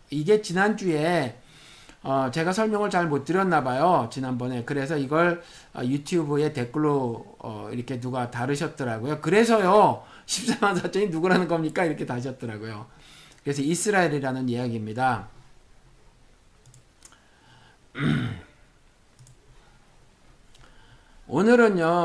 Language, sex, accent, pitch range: Korean, male, native, 125-175 Hz